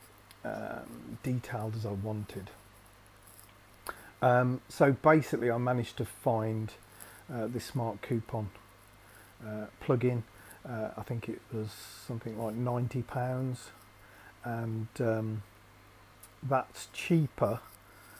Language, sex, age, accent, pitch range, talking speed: English, male, 40-59, British, 105-125 Hz, 100 wpm